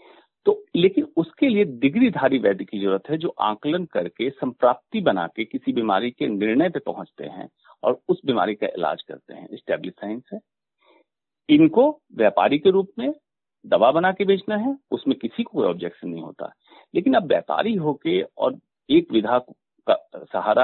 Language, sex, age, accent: Hindi, male, 50-69, native